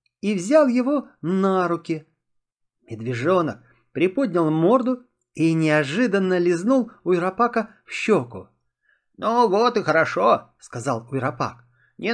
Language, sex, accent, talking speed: Russian, male, native, 105 wpm